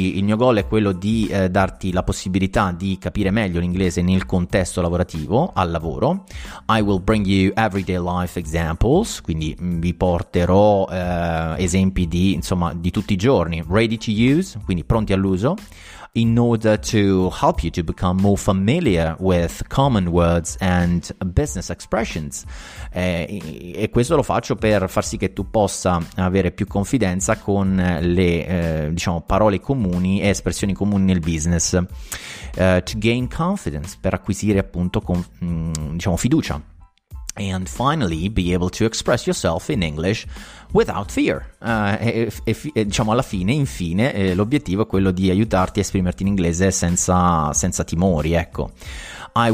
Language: Italian